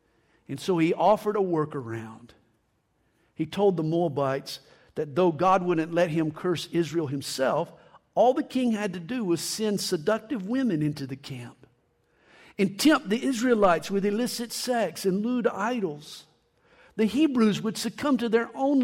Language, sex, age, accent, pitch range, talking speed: English, male, 50-69, American, 160-245 Hz, 155 wpm